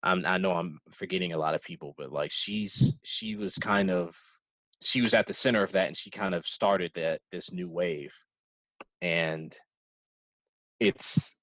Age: 20-39